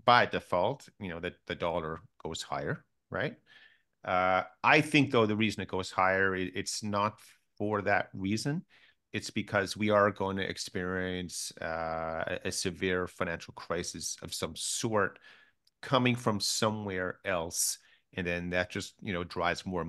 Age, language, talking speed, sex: 40-59, English, 155 wpm, male